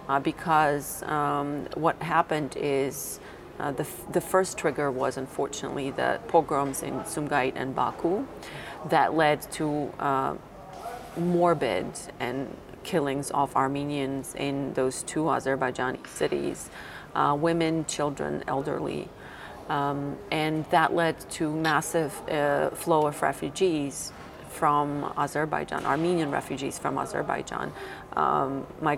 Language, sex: English, female